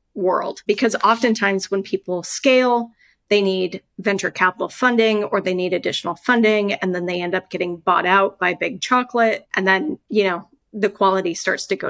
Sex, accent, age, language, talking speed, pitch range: female, American, 30-49, English, 180 wpm, 190-230 Hz